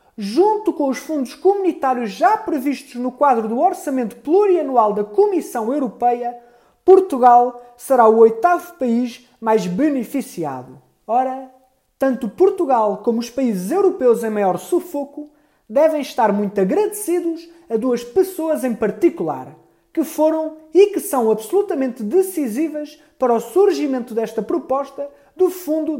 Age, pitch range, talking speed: 20-39, 230-320 Hz, 125 wpm